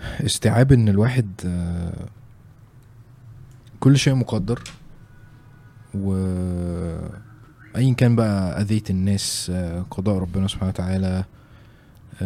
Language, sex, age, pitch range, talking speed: Arabic, male, 20-39, 100-120 Hz, 75 wpm